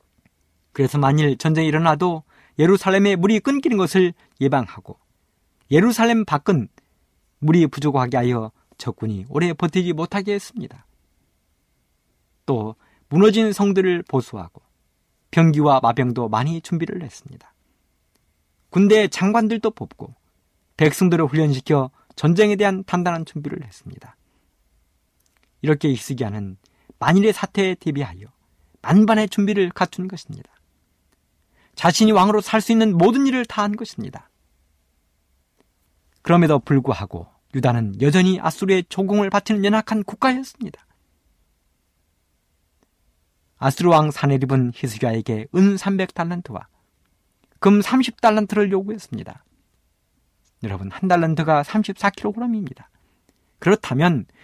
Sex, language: male, Korean